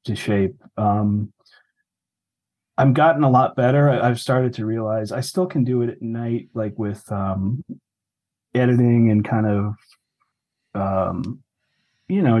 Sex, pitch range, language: male, 100-120 Hz, English